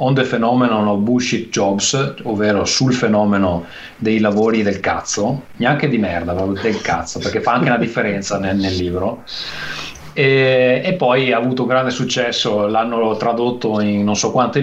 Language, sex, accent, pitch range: Italian, male, native, 110-135 Hz